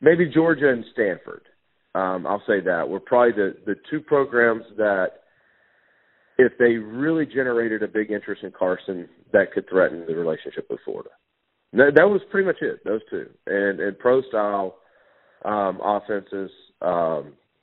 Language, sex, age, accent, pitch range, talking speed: English, male, 40-59, American, 105-165 Hz, 155 wpm